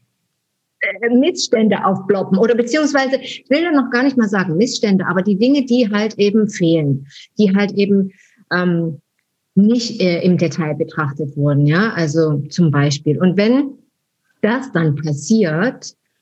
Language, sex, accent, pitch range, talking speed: German, female, German, 165-215 Hz, 145 wpm